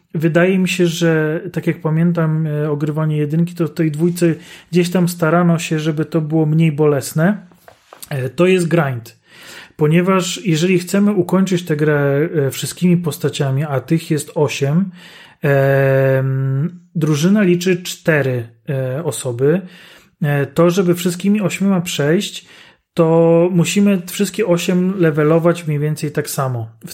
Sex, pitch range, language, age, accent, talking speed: male, 150-175 Hz, Polish, 30-49, native, 140 wpm